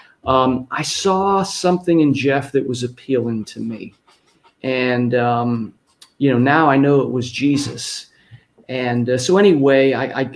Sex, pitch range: male, 125-145 Hz